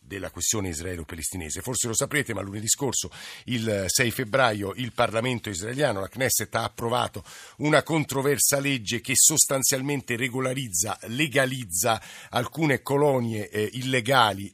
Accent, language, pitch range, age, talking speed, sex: native, Italian, 105-130 Hz, 50-69, 125 wpm, male